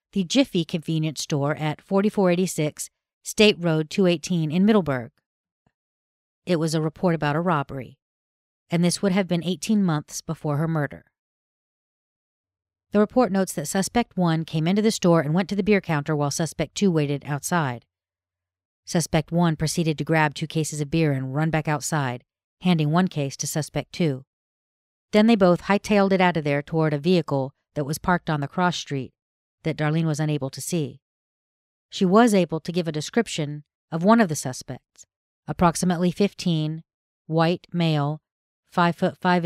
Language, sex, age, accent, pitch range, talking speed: English, female, 40-59, American, 150-180 Hz, 170 wpm